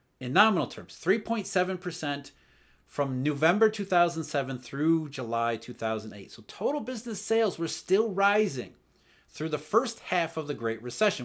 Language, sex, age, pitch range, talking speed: English, male, 40-59, 125-175 Hz, 135 wpm